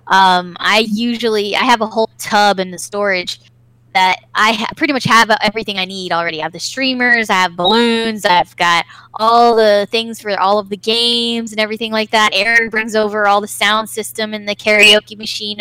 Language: English